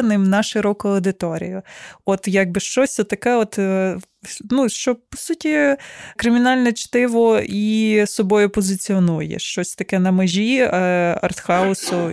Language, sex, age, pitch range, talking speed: Ukrainian, female, 20-39, 190-225 Hz, 110 wpm